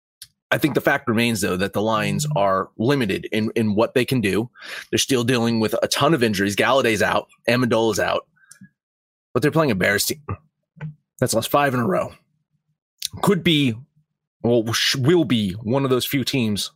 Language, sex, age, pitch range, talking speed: English, male, 30-49, 105-140 Hz, 185 wpm